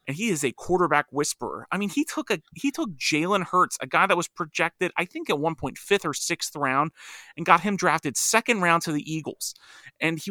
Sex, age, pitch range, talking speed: male, 30-49, 145-180 Hz, 235 wpm